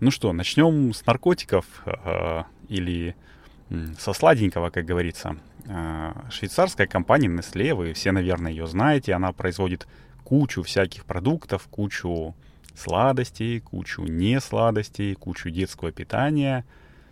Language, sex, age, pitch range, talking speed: Russian, male, 30-49, 90-115 Hz, 110 wpm